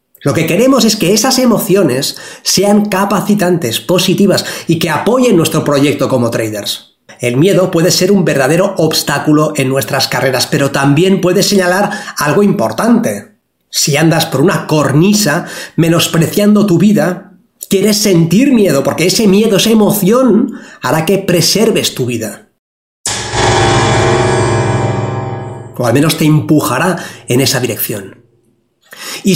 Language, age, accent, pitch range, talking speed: Spanish, 30-49, Spanish, 135-200 Hz, 130 wpm